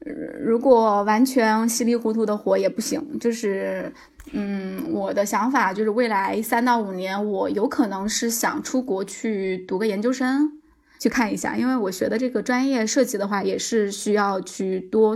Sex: female